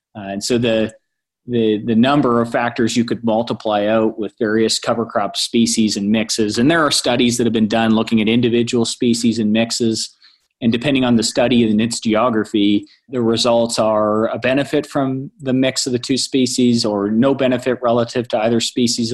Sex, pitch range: male, 110-125 Hz